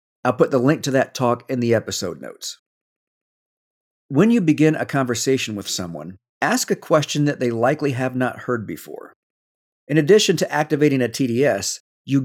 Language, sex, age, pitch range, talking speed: English, male, 50-69, 120-160 Hz, 170 wpm